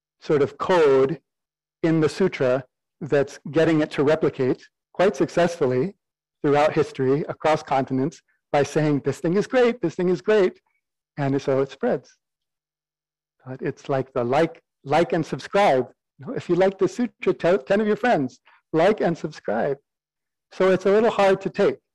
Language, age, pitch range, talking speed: English, 50-69, 135-165 Hz, 160 wpm